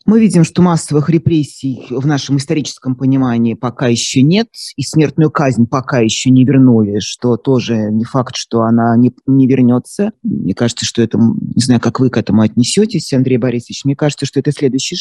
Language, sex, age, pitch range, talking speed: Russian, male, 30-49, 130-175 Hz, 185 wpm